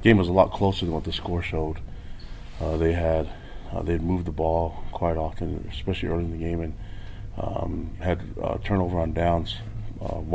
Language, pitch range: English, 80-95 Hz